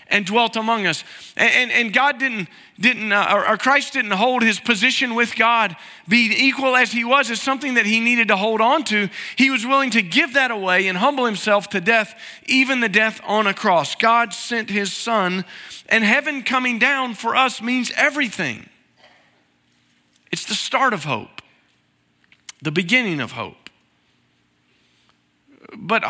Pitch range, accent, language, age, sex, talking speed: 185-235 Hz, American, English, 40-59, male, 170 wpm